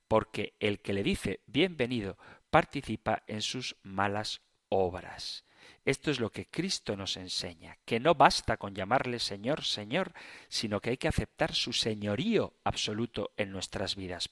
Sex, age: male, 40-59